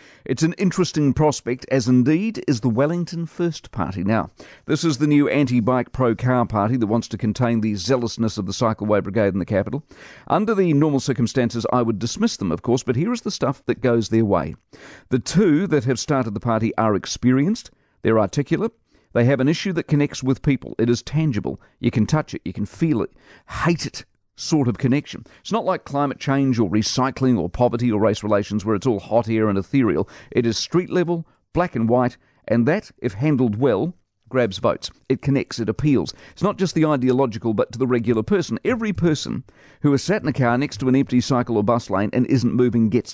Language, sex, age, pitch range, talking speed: English, male, 50-69, 115-150 Hz, 215 wpm